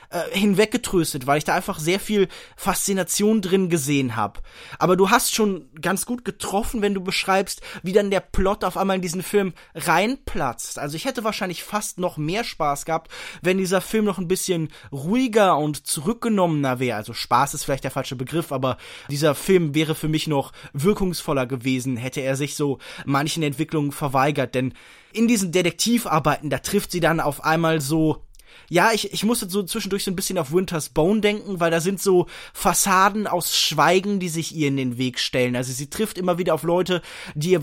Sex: male